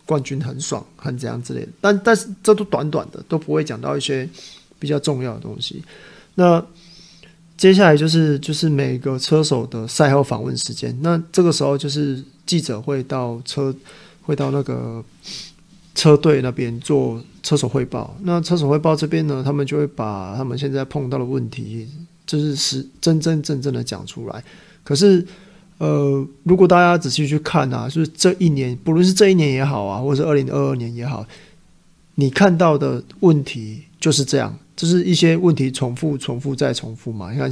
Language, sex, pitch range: Chinese, male, 130-165 Hz